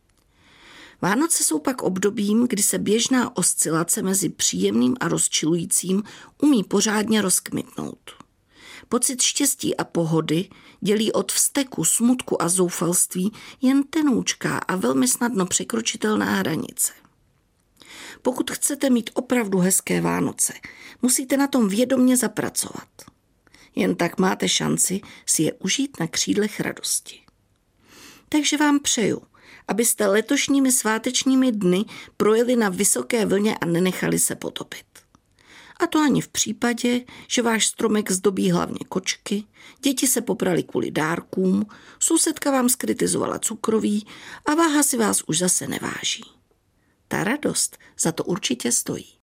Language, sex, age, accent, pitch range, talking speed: Czech, female, 40-59, native, 190-265 Hz, 125 wpm